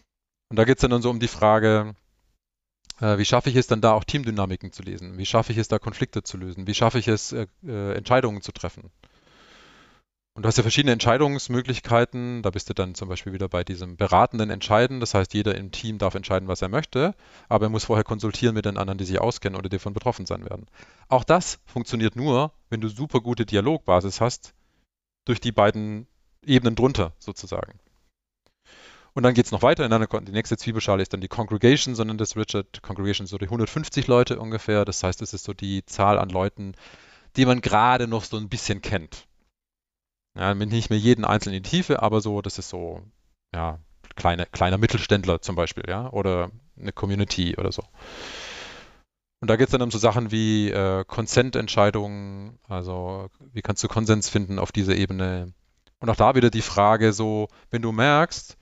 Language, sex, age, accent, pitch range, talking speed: German, male, 30-49, German, 95-120 Hz, 195 wpm